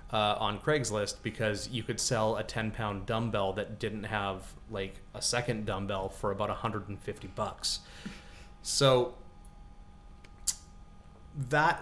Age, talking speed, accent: 30-49, 120 wpm, American